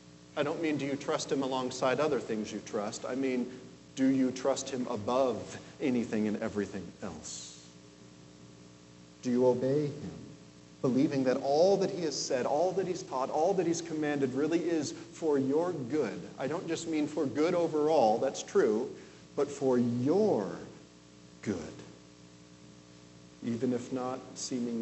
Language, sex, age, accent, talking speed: English, male, 40-59, American, 155 wpm